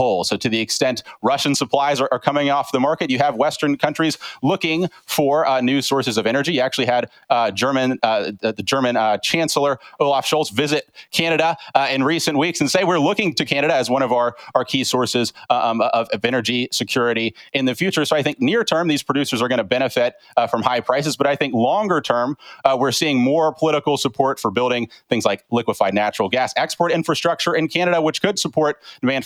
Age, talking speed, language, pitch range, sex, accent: 30-49, 210 wpm, English, 120-155 Hz, male, American